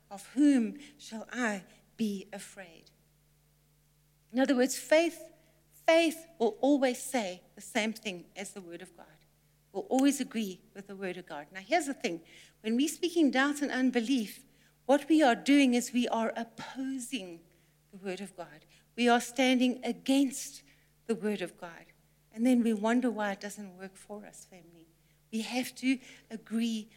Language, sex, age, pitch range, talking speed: English, female, 60-79, 200-260 Hz, 165 wpm